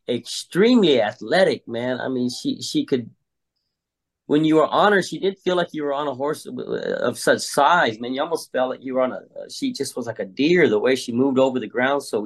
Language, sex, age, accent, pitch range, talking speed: English, male, 40-59, American, 120-155 Hz, 245 wpm